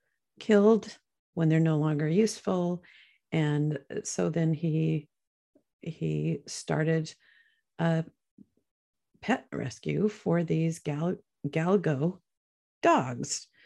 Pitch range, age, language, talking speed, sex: 160-200 Hz, 50-69, English, 90 wpm, female